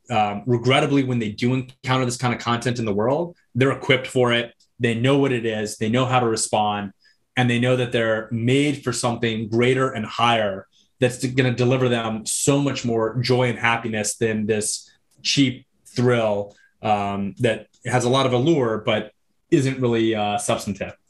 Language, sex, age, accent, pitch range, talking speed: English, male, 30-49, American, 110-130 Hz, 190 wpm